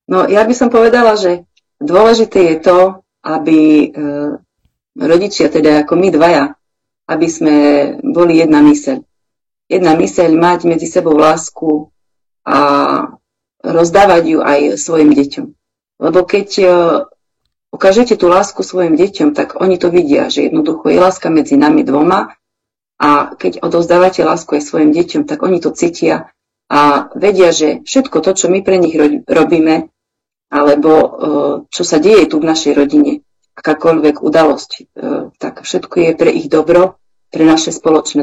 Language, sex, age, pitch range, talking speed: Slovak, female, 40-59, 155-185 Hz, 150 wpm